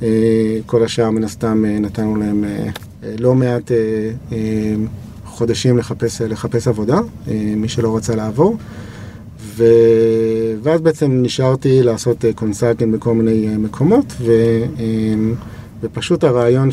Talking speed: 100 wpm